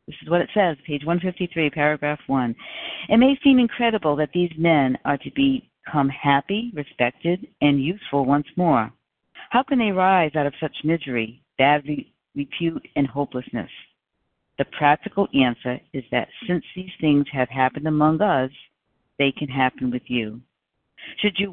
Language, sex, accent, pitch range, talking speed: English, female, American, 135-175 Hz, 155 wpm